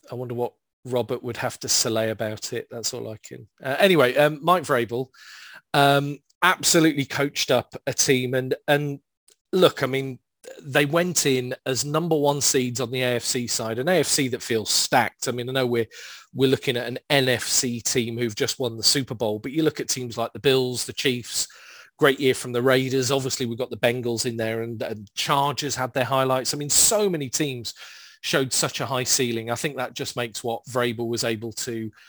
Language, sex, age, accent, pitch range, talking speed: English, male, 40-59, British, 120-140 Hz, 210 wpm